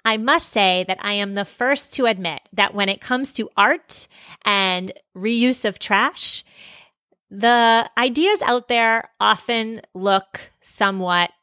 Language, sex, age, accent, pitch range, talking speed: English, female, 30-49, American, 195-245 Hz, 140 wpm